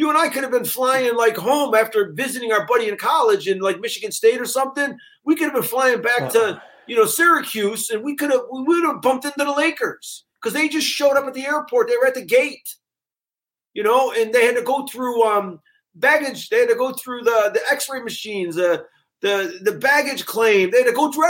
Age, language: 40-59, English